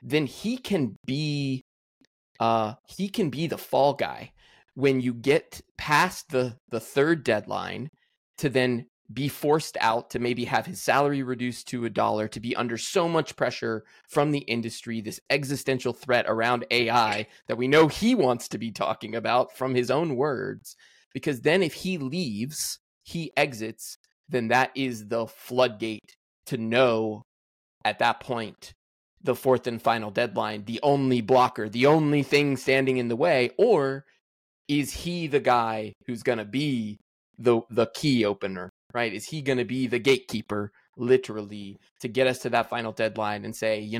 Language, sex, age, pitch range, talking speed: English, male, 20-39, 115-135 Hz, 170 wpm